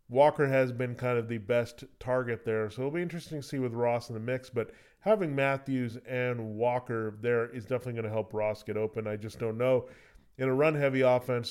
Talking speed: 220 wpm